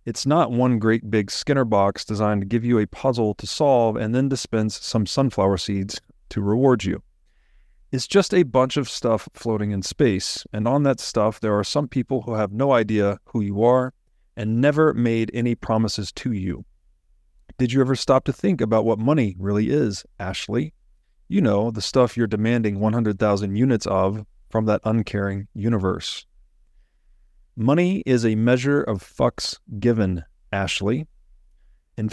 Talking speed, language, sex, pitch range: 165 wpm, English, male, 105-130 Hz